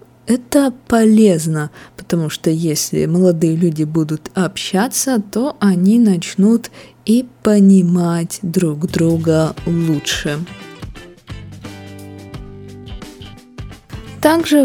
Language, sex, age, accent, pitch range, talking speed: Russian, female, 20-39, native, 165-215 Hz, 75 wpm